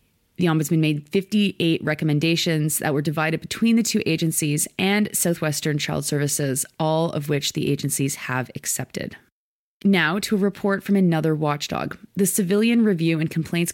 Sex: female